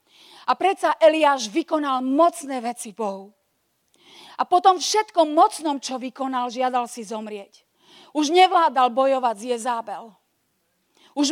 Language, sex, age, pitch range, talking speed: Slovak, female, 40-59, 240-310 Hz, 120 wpm